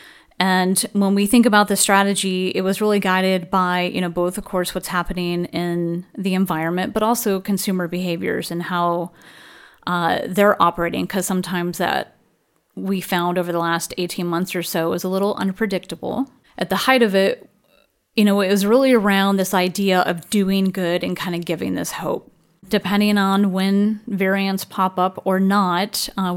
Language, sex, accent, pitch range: English, female, American, 180-200 Hz